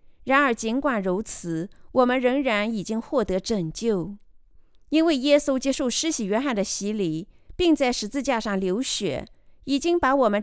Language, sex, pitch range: Chinese, female, 205-290 Hz